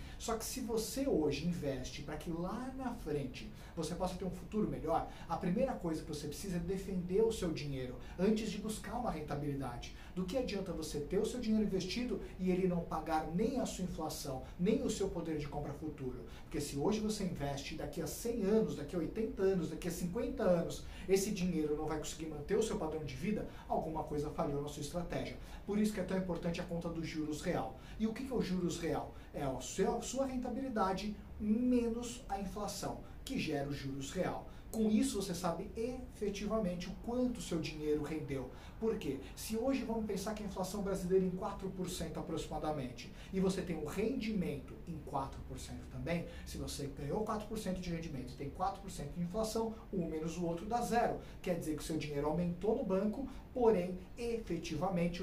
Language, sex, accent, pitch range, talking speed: Portuguese, male, Brazilian, 155-210 Hz, 200 wpm